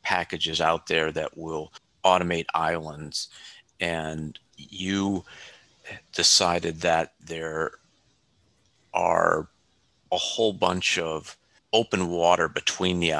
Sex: male